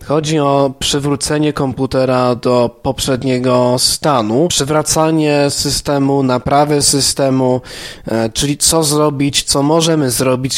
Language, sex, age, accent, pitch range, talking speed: Polish, male, 20-39, native, 125-150 Hz, 95 wpm